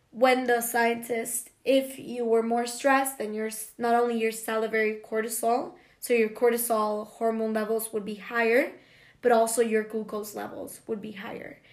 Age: 20-39